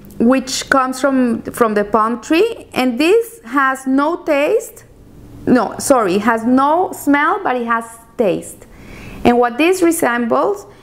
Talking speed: 140 wpm